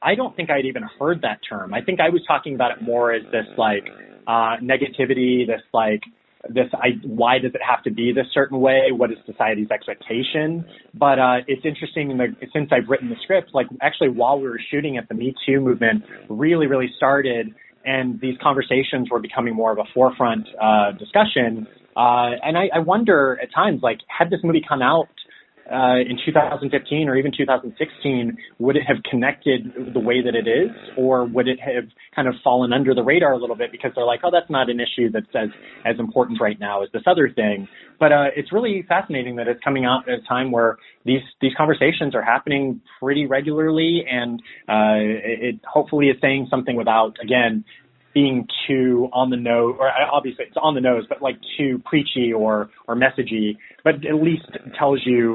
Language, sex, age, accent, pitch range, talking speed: English, male, 20-39, American, 120-145 Hz, 205 wpm